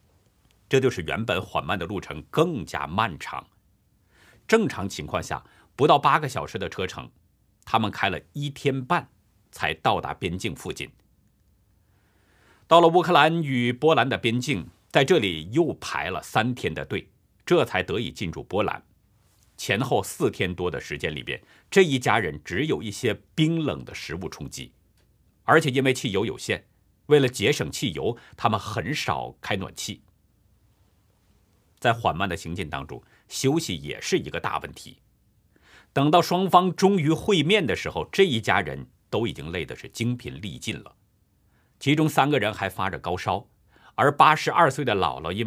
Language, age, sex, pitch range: Chinese, 50-69, male, 95-145 Hz